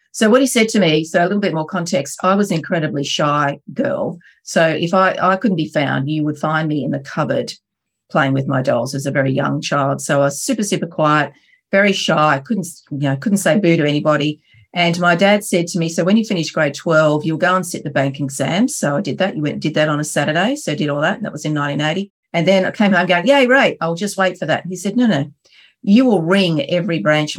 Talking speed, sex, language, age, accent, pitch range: 270 wpm, female, English, 40-59, Australian, 150-195 Hz